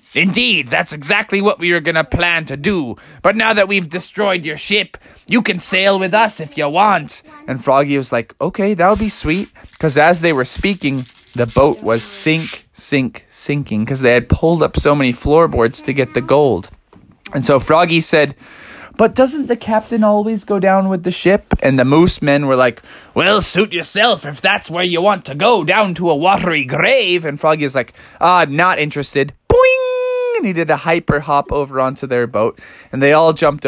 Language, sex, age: English, male, 20-39